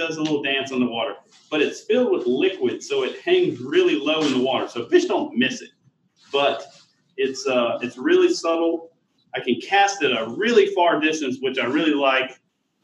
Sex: male